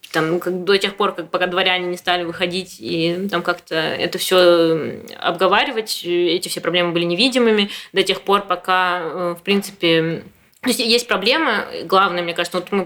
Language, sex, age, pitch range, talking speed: Russian, female, 20-39, 175-205 Hz, 150 wpm